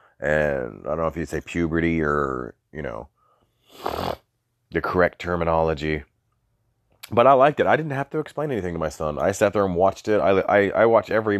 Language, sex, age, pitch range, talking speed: English, male, 30-49, 75-110 Hz, 200 wpm